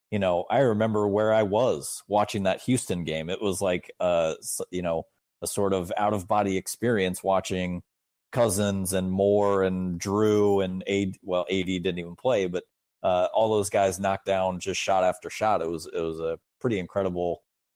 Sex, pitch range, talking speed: male, 90-105 Hz, 185 wpm